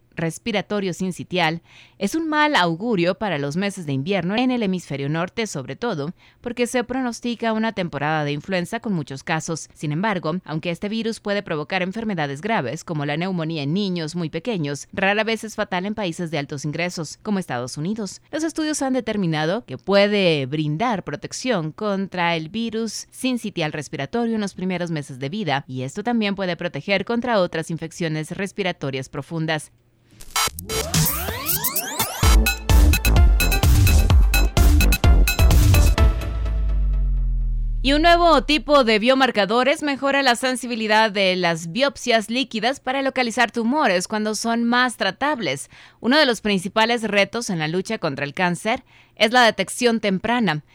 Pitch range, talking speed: 155-225 Hz, 145 wpm